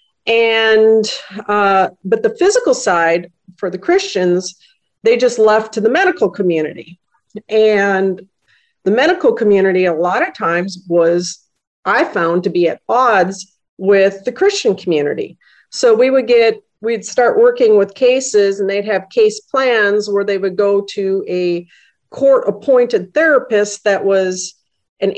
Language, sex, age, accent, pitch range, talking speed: English, female, 50-69, American, 180-235 Hz, 145 wpm